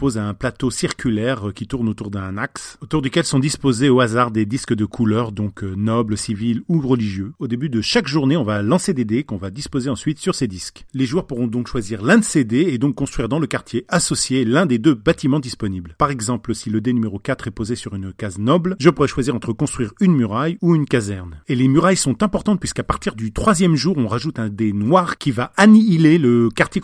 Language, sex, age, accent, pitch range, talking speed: French, male, 40-59, French, 115-155 Hz, 235 wpm